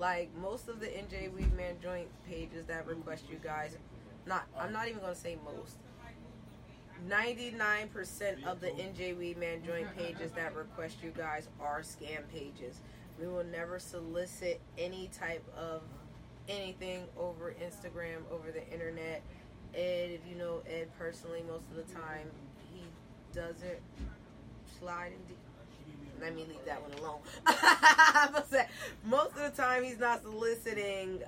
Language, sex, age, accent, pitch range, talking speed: English, female, 20-39, American, 165-195 Hz, 150 wpm